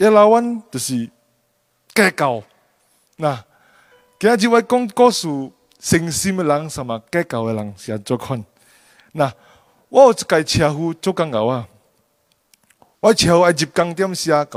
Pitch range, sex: 145-215 Hz, male